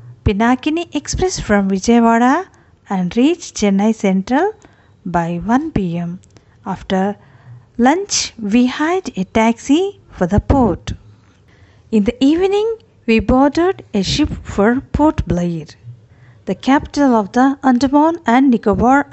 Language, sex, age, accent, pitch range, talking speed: Telugu, female, 50-69, native, 170-270 Hz, 115 wpm